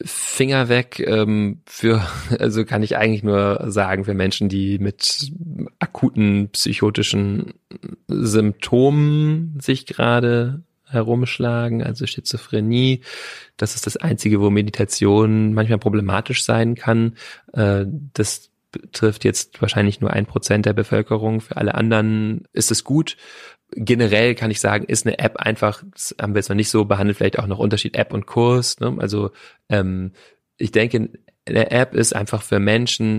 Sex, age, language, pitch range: male, 30-49, German, 105-120 Hz